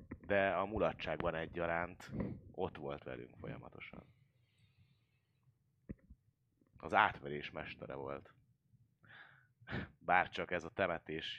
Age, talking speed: 30-49, 90 wpm